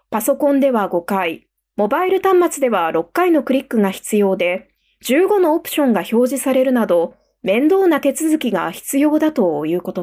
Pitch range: 200-300 Hz